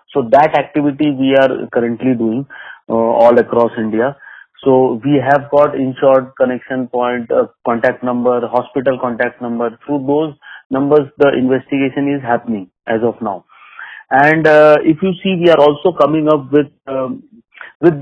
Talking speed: 155 wpm